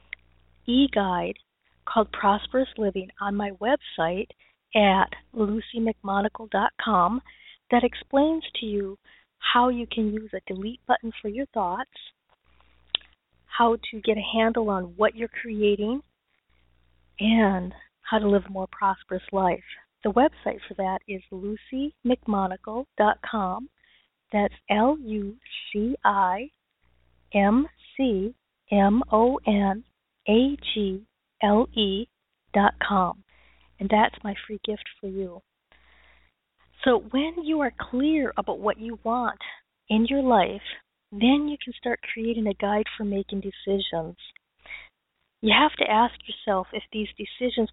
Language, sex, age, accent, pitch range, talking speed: English, female, 40-59, American, 200-240 Hz, 115 wpm